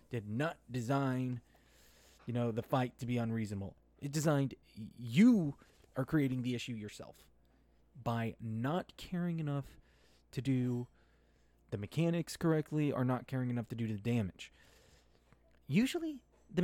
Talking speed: 135 wpm